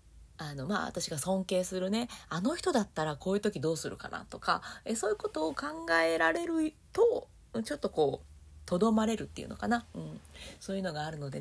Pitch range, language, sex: 150-215 Hz, Japanese, female